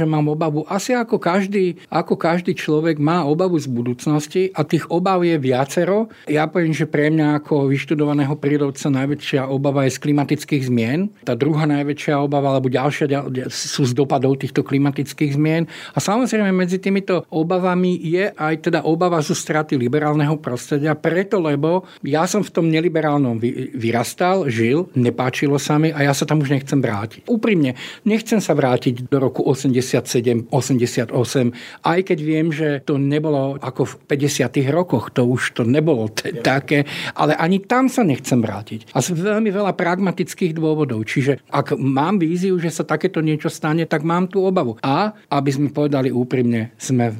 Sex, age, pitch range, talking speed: male, 50-69, 130-165 Hz, 170 wpm